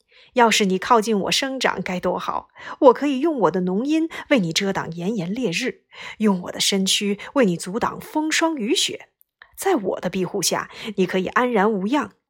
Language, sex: Chinese, female